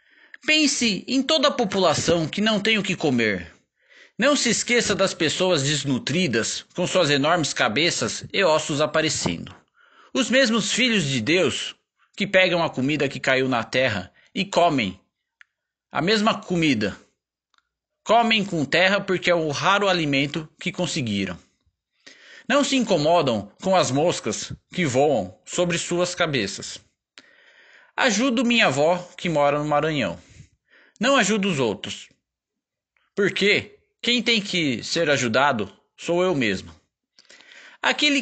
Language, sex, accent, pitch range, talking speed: Portuguese, male, Brazilian, 145-240 Hz, 130 wpm